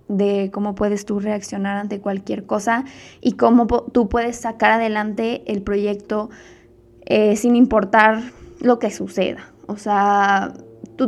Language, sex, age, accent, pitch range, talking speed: Spanish, female, 20-39, Mexican, 205-235 Hz, 135 wpm